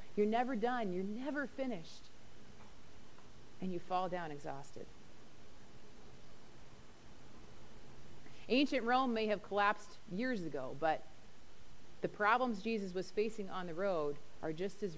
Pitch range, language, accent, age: 175-225 Hz, English, American, 30-49